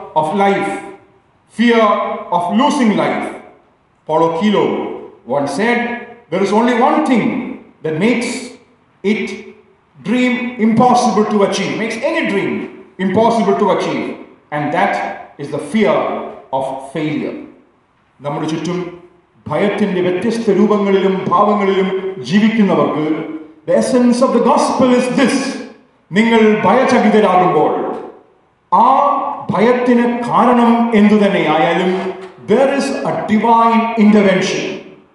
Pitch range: 185-245 Hz